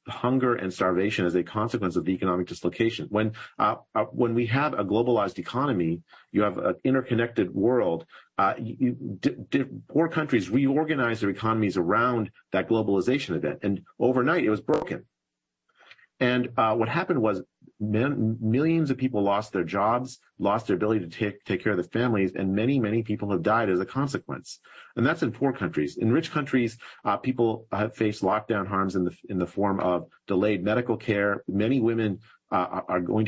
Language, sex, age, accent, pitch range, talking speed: English, male, 40-59, American, 95-120 Hz, 185 wpm